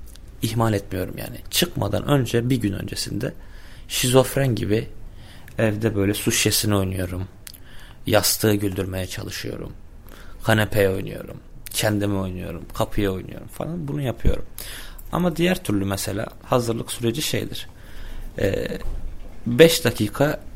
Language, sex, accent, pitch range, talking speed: Turkish, male, native, 100-135 Hz, 110 wpm